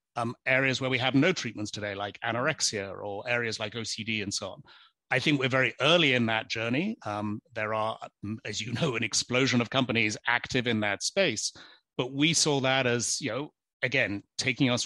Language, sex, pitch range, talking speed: English, male, 110-130 Hz, 200 wpm